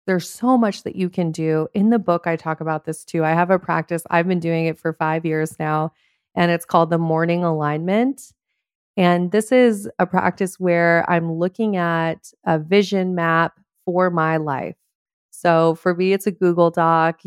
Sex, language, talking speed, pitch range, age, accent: female, English, 190 wpm, 165-185 Hz, 30-49, American